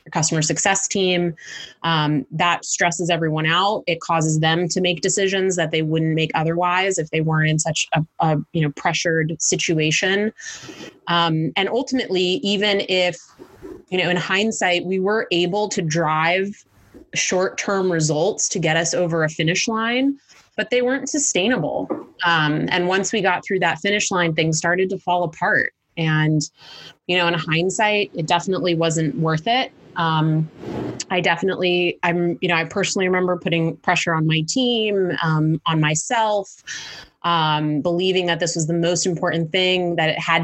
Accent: American